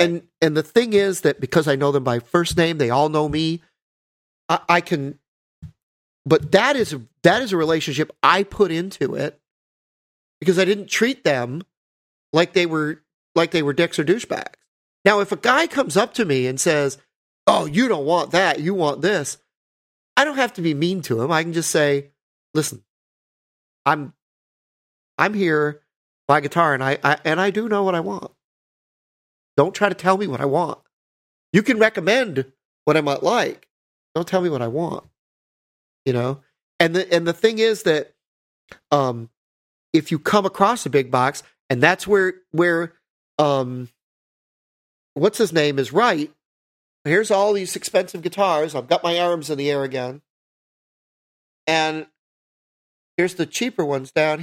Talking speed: 175 wpm